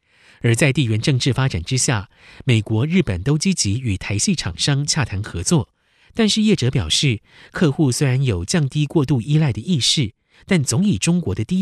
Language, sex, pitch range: Chinese, male, 105-155 Hz